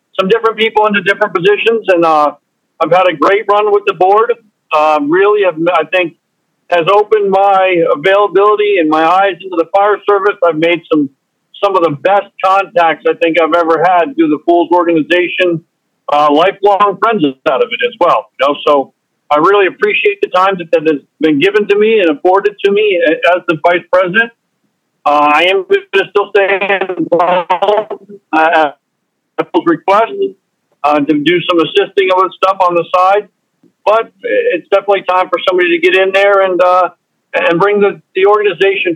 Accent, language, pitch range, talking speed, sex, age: American, English, 170-205 Hz, 180 wpm, male, 50-69